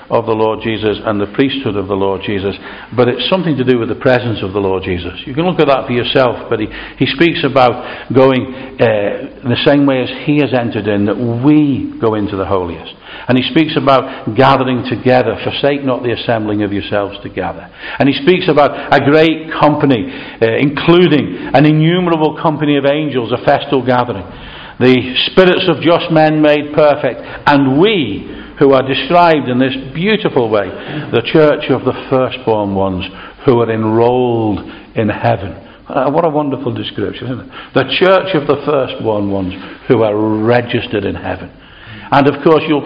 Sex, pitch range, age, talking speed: male, 110-145 Hz, 50-69, 180 wpm